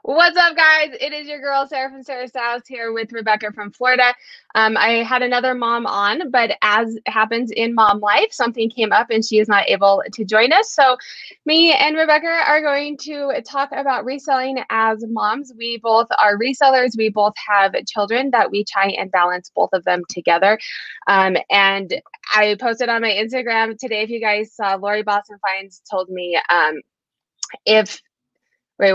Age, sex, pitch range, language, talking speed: 20-39, female, 195-260 Hz, English, 180 wpm